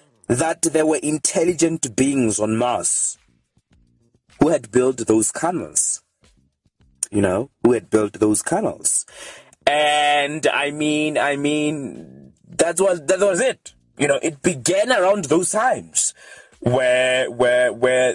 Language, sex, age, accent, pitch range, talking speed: English, male, 20-39, South African, 115-165 Hz, 130 wpm